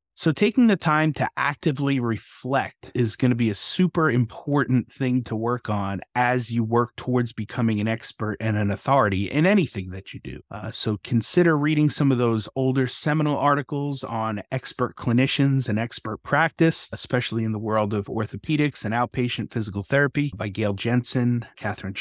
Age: 30-49